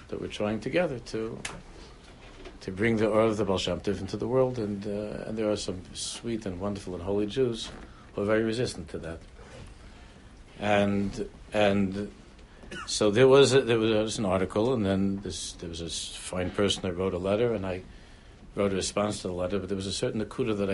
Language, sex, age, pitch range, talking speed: English, male, 60-79, 90-105 Hz, 205 wpm